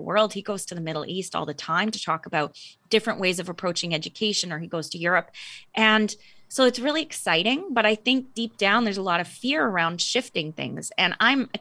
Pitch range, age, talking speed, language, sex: 175-225 Hz, 20-39, 225 wpm, English, female